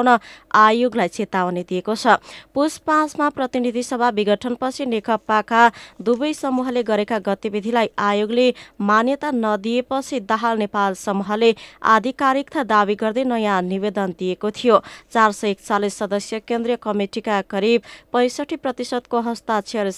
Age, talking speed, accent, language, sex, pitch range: 20-39, 110 wpm, Indian, English, female, 210-250 Hz